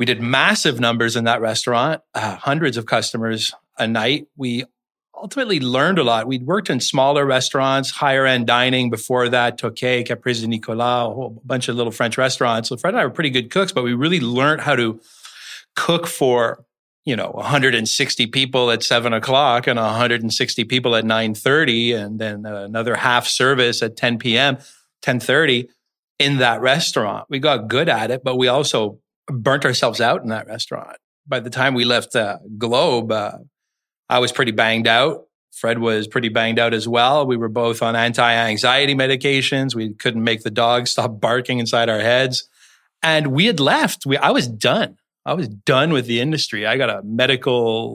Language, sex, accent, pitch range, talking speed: English, male, American, 115-130 Hz, 185 wpm